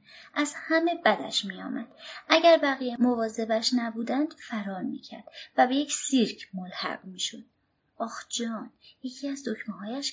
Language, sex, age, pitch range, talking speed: Persian, female, 30-49, 220-295 Hz, 130 wpm